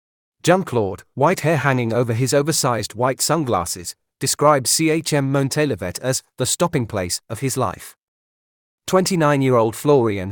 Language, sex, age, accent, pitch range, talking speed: English, male, 40-59, British, 115-150 Hz, 120 wpm